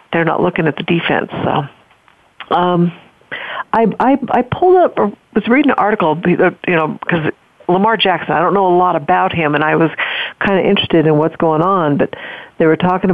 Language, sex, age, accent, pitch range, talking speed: English, female, 50-69, American, 160-185 Hz, 195 wpm